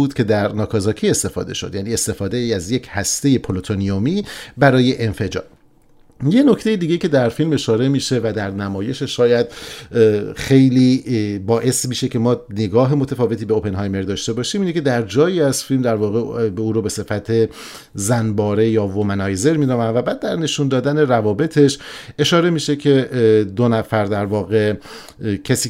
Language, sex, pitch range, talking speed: Persian, male, 105-140 Hz, 160 wpm